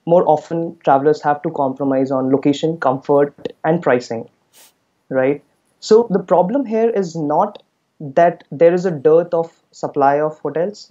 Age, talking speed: 20-39, 150 wpm